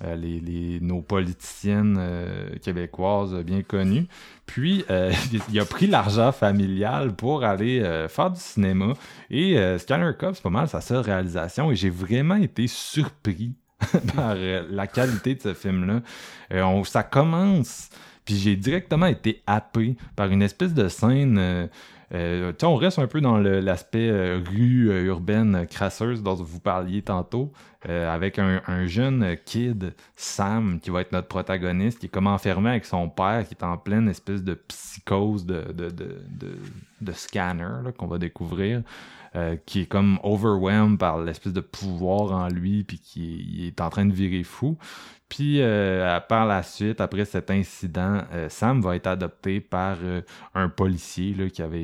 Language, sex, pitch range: French, male, 90-110 Hz